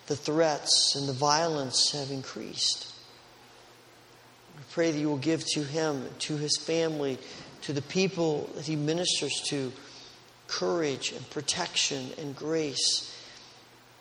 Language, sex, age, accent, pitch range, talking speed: English, male, 40-59, American, 130-165 Hz, 130 wpm